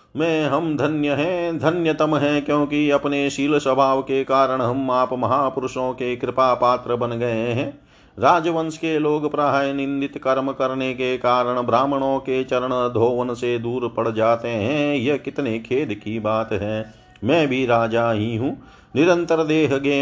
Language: Hindi